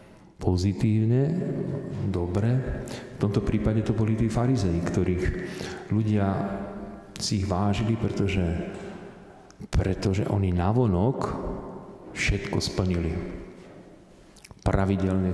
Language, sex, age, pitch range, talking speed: Slovak, male, 40-59, 90-105 Hz, 85 wpm